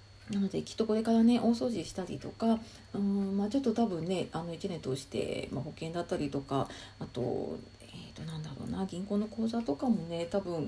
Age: 40-59